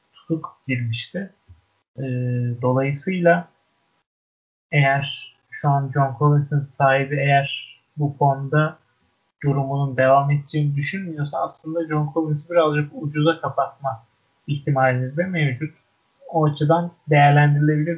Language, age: Turkish, 30-49